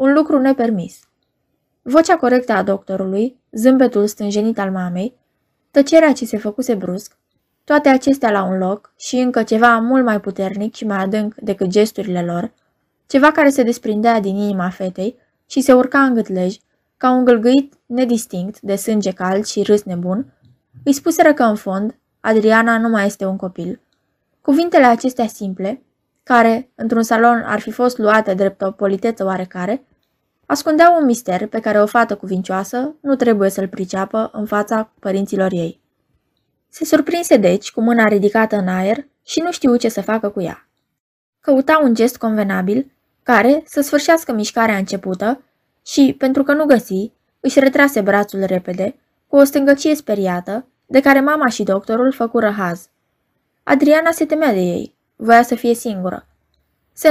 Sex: female